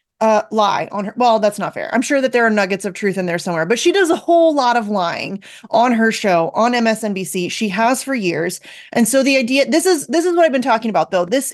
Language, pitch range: English, 210-260 Hz